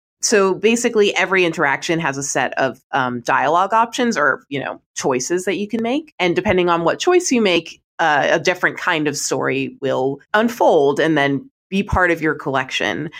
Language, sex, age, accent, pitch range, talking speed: English, female, 20-39, American, 140-200 Hz, 185 wpm